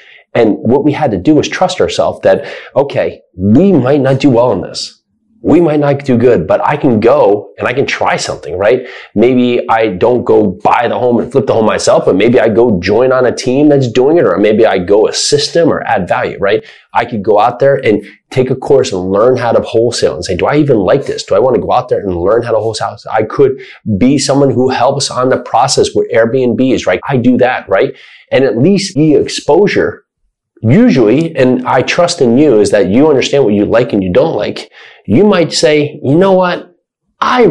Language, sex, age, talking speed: English, male, 30-49, 230 wpm